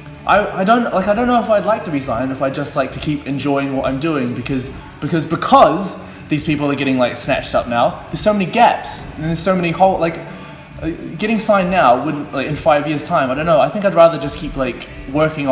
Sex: male